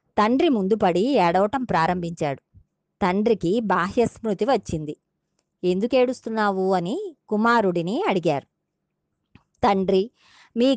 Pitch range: 180-240 Hz